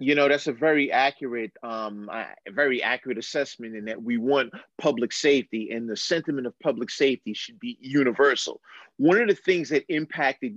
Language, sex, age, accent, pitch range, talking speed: English, male, 30-49, American, 135-195 Hz, 180 wpm